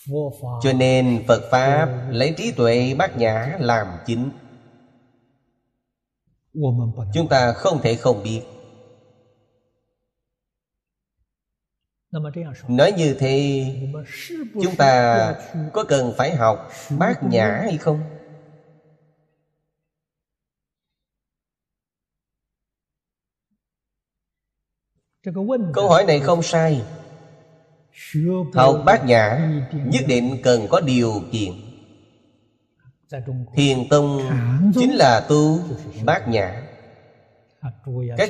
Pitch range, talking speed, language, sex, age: 120-155 Hz, 80 wpm, Vietnamese, male, 30-49